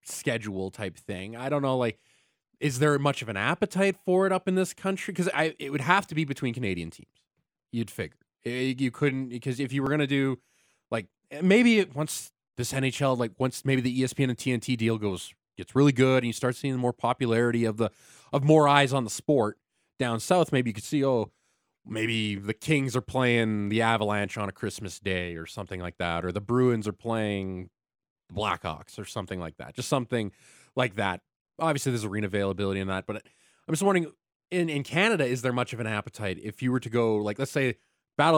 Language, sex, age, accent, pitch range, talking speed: English, male, 20-39, American, 105-140 Hz, 210 wpm